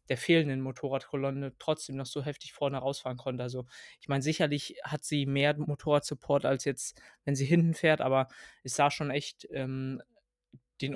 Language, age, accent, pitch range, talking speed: German, 20-39, German, 130-145 Hz, 170 wpm